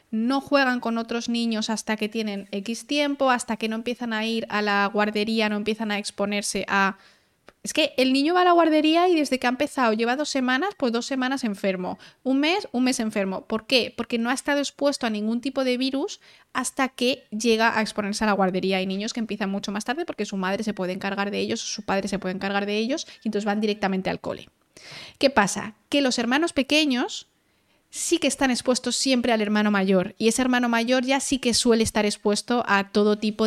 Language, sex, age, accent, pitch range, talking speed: Spanish, female, 20-39, Spanish, 205-260 Hz, 225 wpm